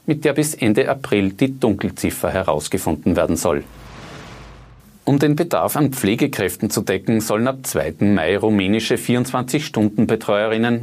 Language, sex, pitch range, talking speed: German, male, 100-130 Hz, 125 wpm